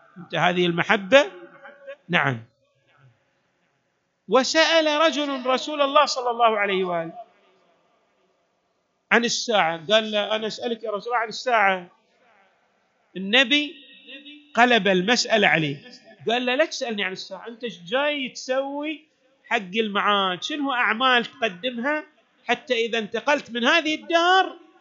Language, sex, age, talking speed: Arabic, male, 40-59, 110 wpm